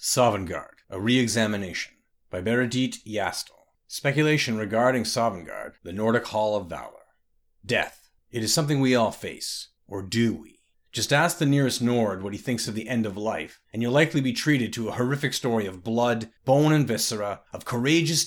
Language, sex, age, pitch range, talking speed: English, male, 30-49, 110-145 Hz, 175 wpm